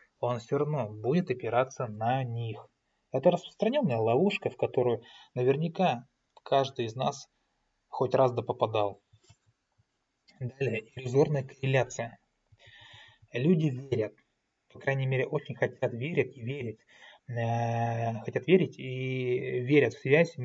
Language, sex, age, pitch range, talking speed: Russian, male, 20-39, 115-140 Hz, 115 wpm